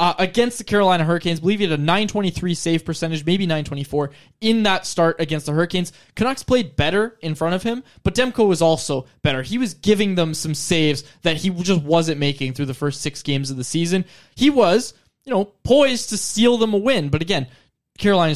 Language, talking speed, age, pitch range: English, 210 wpm, 20-39, 150-200 Hz